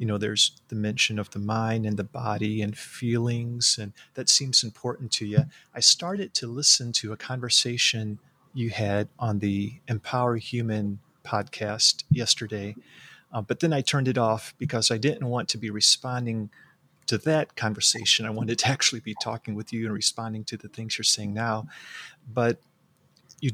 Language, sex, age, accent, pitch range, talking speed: English, male, 30-49, American, 110-135 Hz, 175 wpm